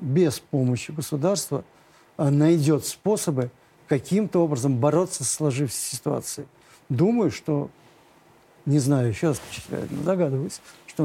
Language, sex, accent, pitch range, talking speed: Russian, male, native, 145-175 Hz, 105 wpm